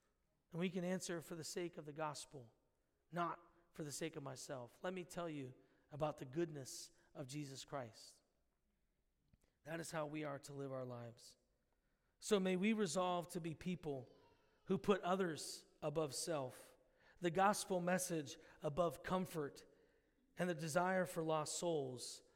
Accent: American